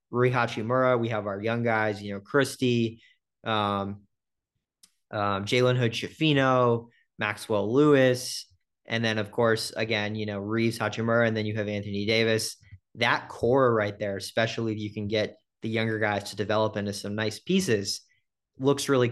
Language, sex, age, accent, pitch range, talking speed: English, male, 30-49, American, 105-115 Hz, 150 wpm